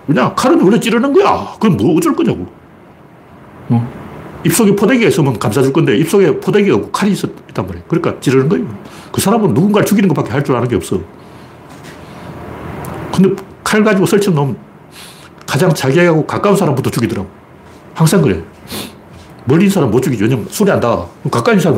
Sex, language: male, Korean